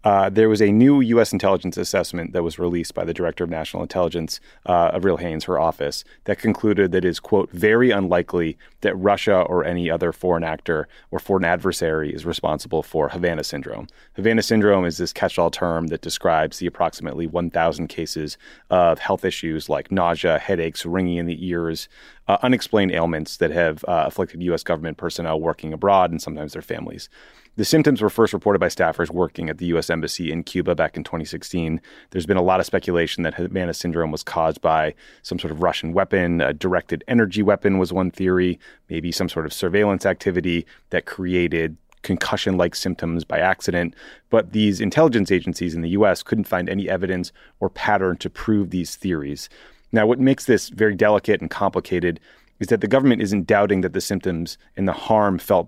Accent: American